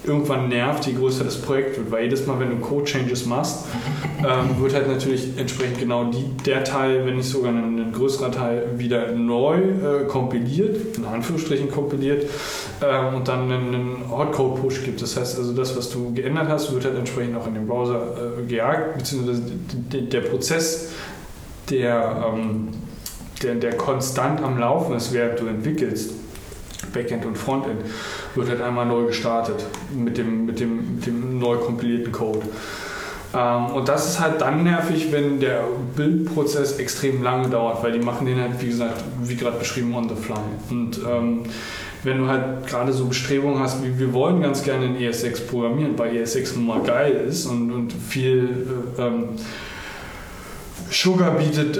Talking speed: 175 wpm